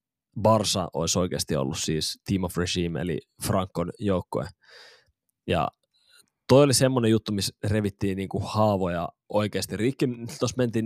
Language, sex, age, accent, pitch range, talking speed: Finnish, male, 20-39, native, 95-115 Hz, 135 wpm